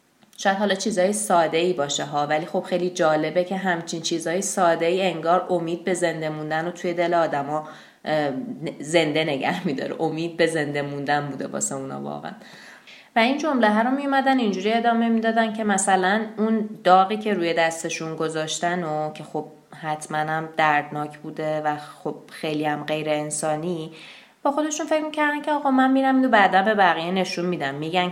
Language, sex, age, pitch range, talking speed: Persian, female, 20-39, 155-200 Hz, 170 wpm